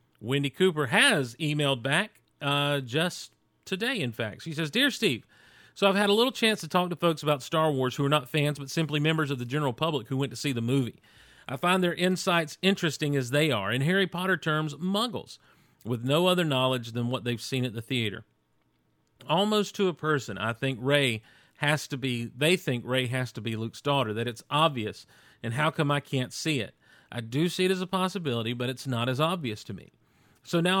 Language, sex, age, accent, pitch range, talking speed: English, male, 40-59, American, 125-165 Hz, 220 wpm